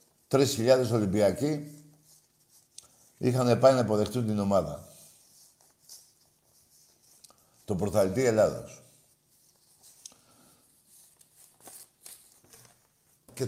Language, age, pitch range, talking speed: Greek, 60-79, 100-145 Hz, 60 wpm